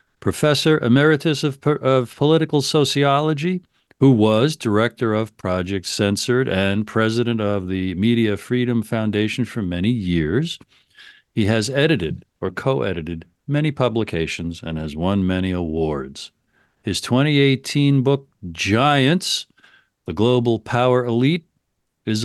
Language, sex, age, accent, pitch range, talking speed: English, male, 50-69, American, 95-135 Hz, 115 wpm